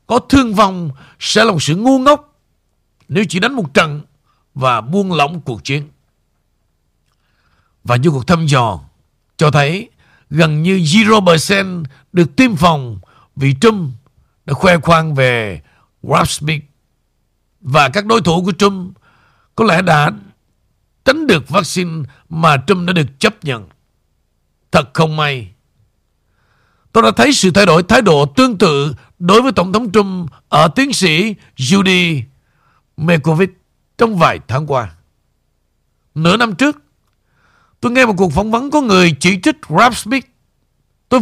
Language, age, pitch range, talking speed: Vietnamese, 60-79, 135-205 Hz, 145 wpm